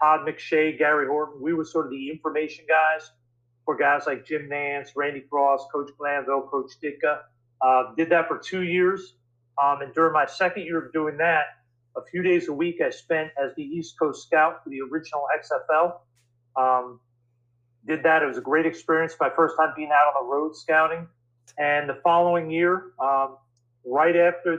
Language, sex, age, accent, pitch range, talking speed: English, male, 40-59, American, 135-165 Hz, 190 wpm